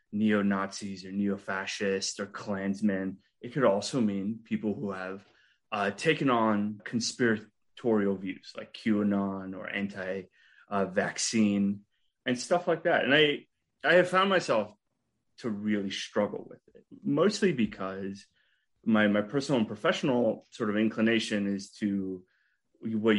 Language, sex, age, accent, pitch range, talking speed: English, male, 20-39, American, 100-125 Hz, 135 wpm